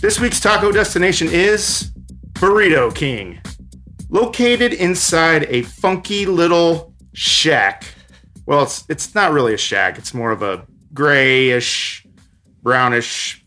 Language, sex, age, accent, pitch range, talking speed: English, male, 30-49, American, 125-175 Hz, 115 wpm